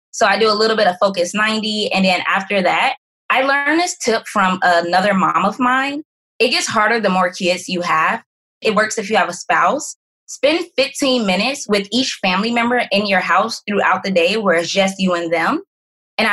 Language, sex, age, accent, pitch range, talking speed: English, female, 20-39, American, 185-235 Hz, 210 wpm